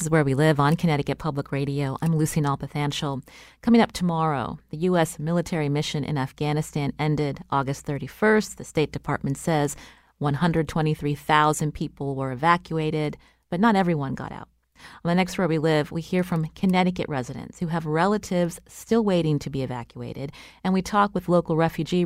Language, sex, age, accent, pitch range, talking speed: English, female, 30-49, American, 145-180 Hz, 170 wpm